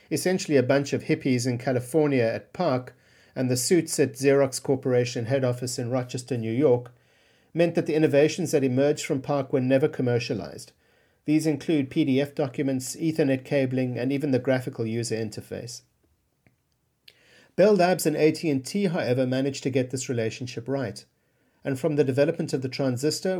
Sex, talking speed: male, 160 wpm